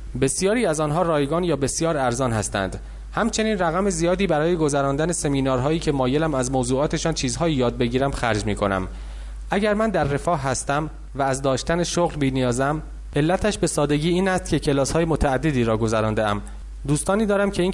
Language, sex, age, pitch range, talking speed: English, male, 30-49, 110-160 Hz, 170 wpm